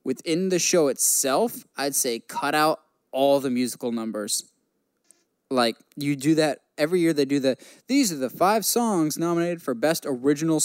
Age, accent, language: 10-29, American, English